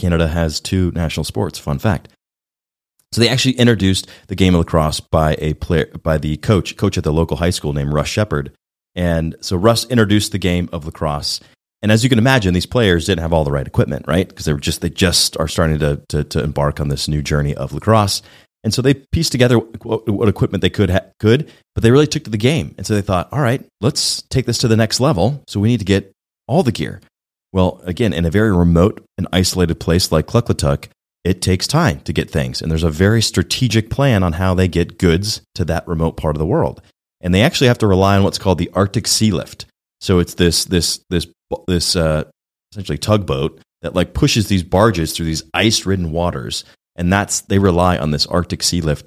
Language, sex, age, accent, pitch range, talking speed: English, male, 30-49, American, 80-105 Hz, 225 wpm